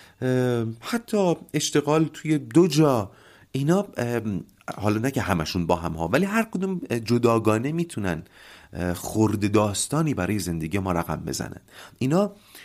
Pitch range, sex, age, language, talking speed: 100-165 Hz, male, 40-59, Persian, 125 wpm